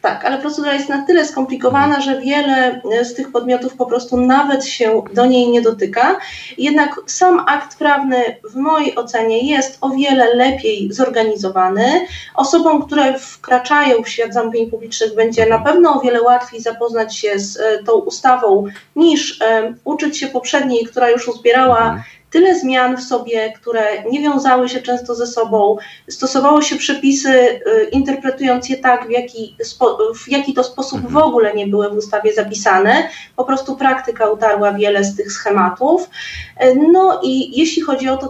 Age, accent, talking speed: 30-49, native, 165 wpm